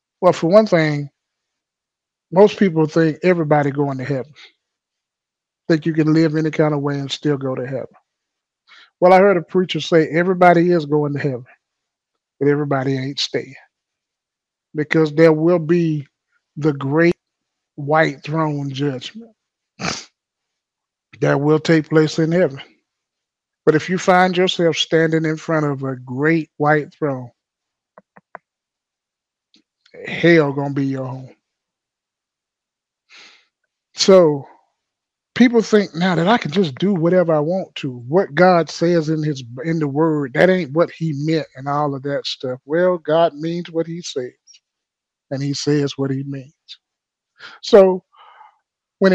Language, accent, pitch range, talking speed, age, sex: English, American, 145-180 Hz, 145 wpm, 30-49, male